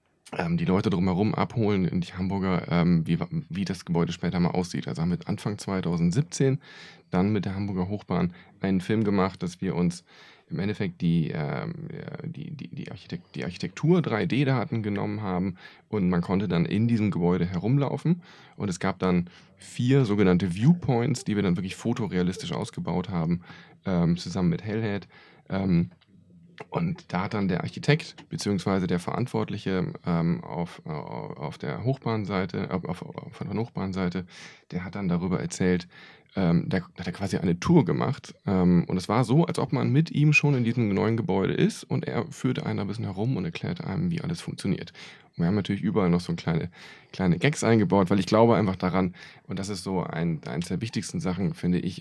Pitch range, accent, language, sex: 90-145 Hz, German, German, male